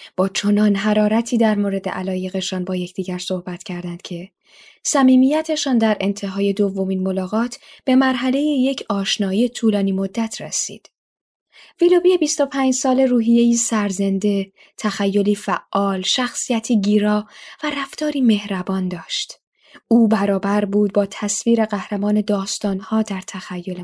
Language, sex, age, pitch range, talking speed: Persian, female, 10-29, 195-245 Hz, 115 wpm